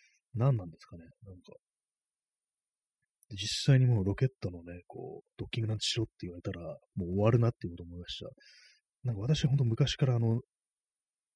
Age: 30-49